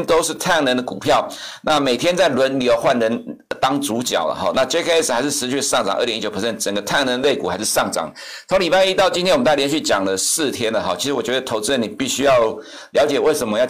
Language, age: Chinese, 60-79